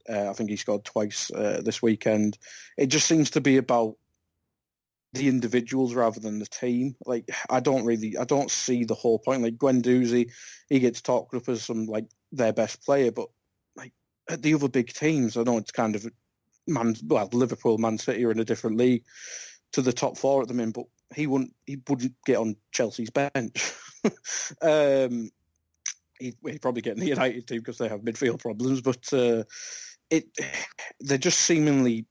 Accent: British